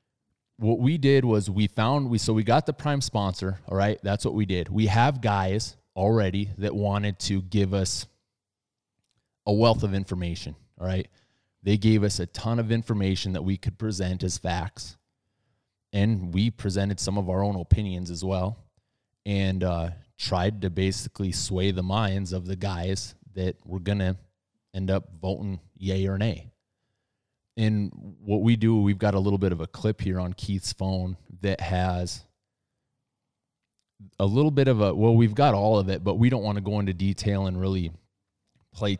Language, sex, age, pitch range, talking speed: English, male, 20-39, 95-110 Hz, 180 wpm